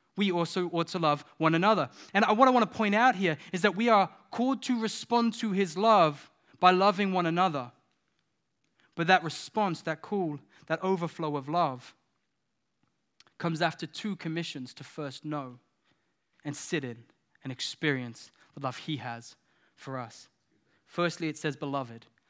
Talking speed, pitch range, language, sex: 160 wpm, 130-165 Hz, English, male